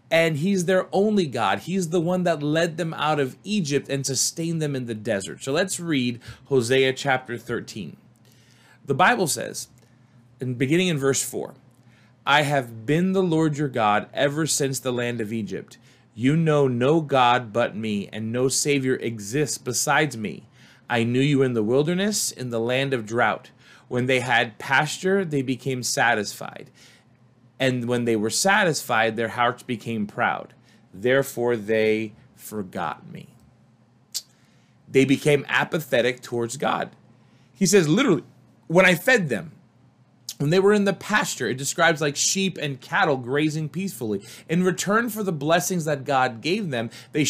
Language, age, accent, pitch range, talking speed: English, 30-49, American, 120-160 Hz, 160 wpm